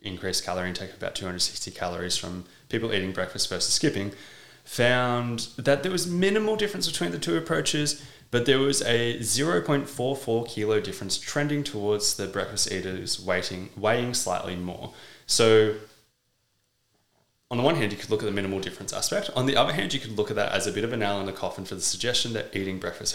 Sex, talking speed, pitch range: male, 195 wpm, 95-125 Hz